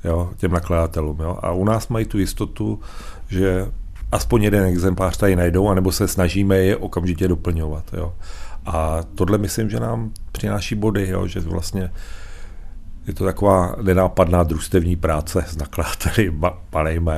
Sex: male